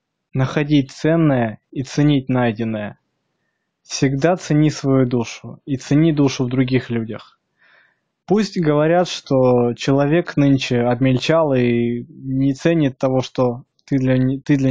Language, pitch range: Russian, 125-150 Hz